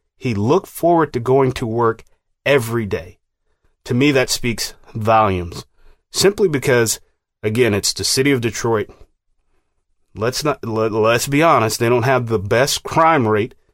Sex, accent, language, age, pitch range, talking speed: male, American, English, 30-49, 100-125 Hz, 155 wpm